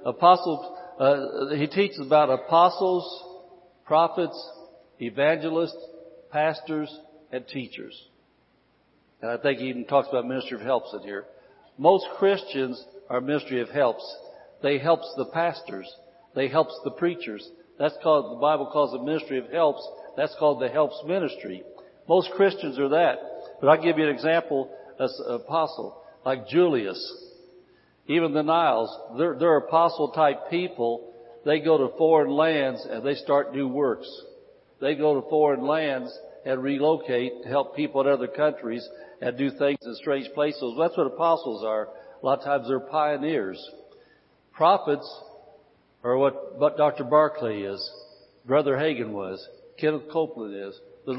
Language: English